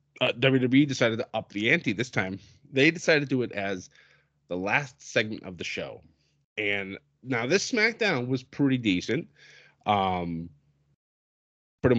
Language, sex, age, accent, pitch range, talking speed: English, male, 20-39, American, 100-135 Hz, 150 wpm